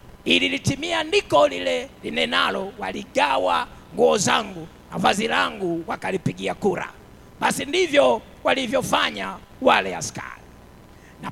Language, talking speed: English, 90 wpm